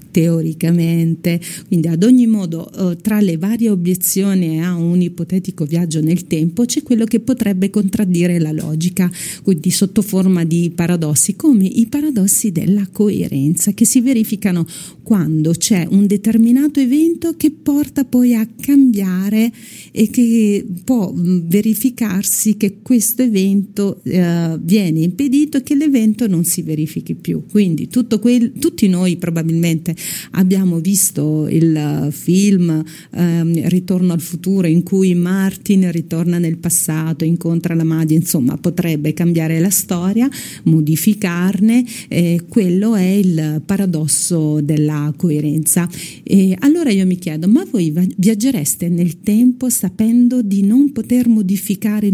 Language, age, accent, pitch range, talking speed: Italian, 50-69, native, 170-220 Hz, 130 wpm